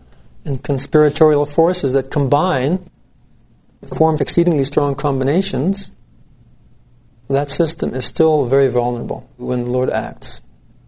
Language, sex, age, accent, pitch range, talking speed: English, male, 50-69, American, 120-145 Hz, 105 wpm